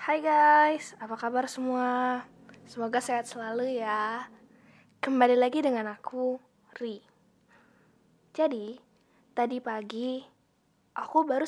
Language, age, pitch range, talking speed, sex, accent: Indonesian, 10-29, 215-250 Hz, 100 wpm, female, native